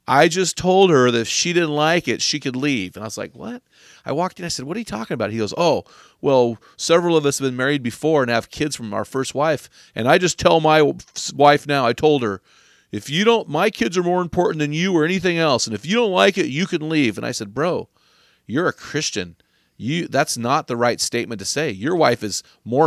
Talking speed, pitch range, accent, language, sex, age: 250 wpm, 120-170 Hz, American, English, male, 40-59